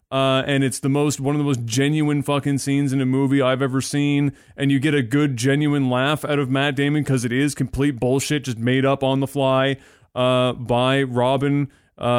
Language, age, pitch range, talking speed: English, 20-39, 125-145 Hz, 215 wpm